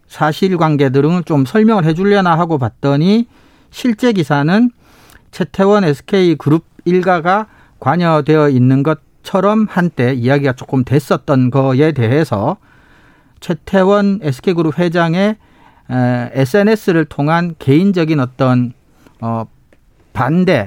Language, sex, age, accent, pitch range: Korean, male, 40-59, native, 135-180 Hz